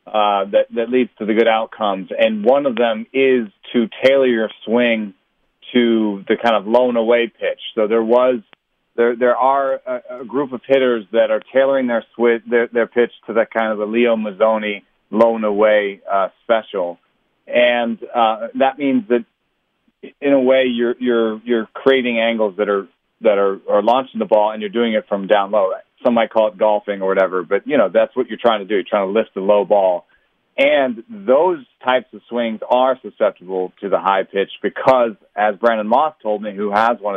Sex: male